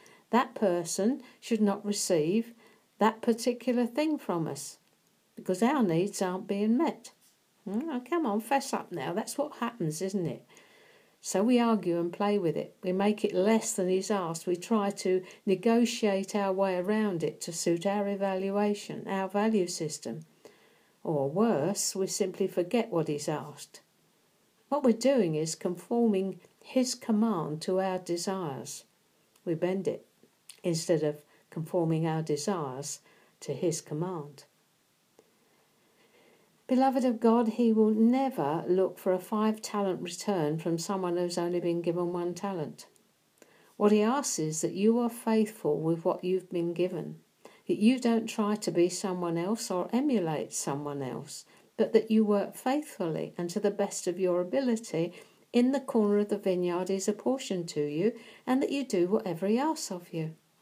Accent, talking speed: British, 155 wpm